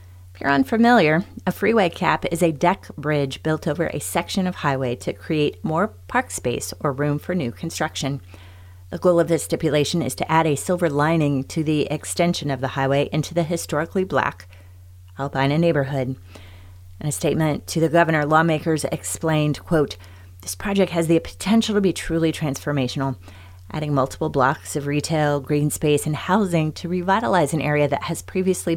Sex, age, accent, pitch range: female, 30-49, American, 130-170 Hz